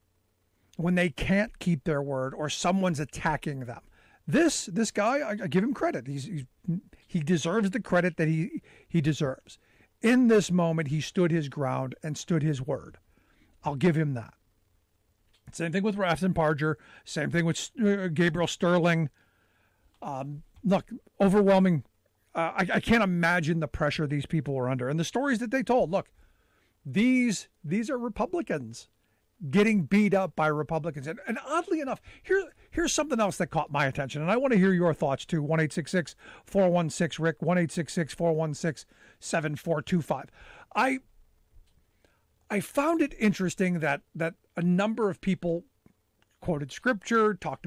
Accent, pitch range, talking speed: American, 145-205 Hz, 150 wpm